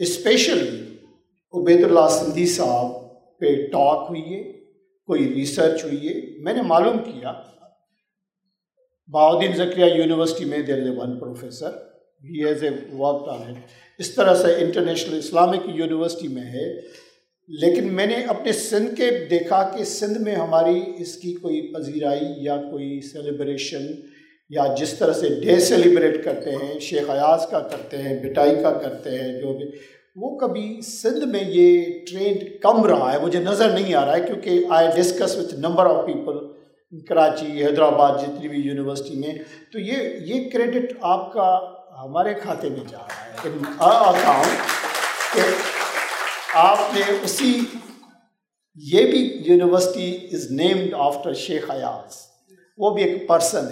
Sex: male